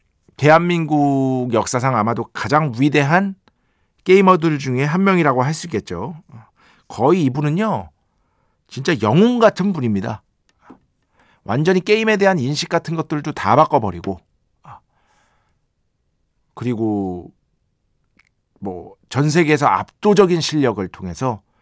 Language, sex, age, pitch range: Korean, male, 50-69, 110-165 Hz